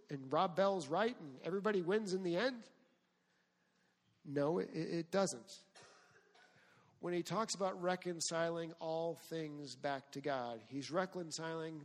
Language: English